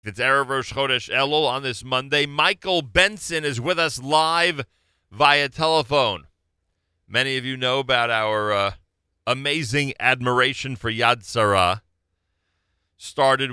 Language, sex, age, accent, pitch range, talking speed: English, male, 40-59, American, 90-115 Hz, 125 wpm